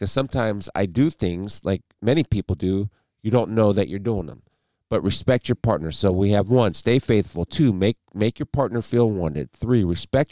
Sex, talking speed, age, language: male, 205 wpm, 50-69, English